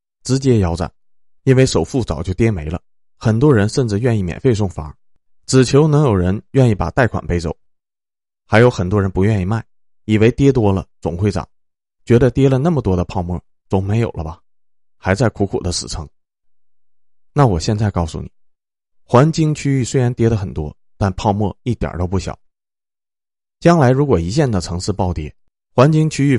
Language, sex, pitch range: Chinese, male, 85-115 Hz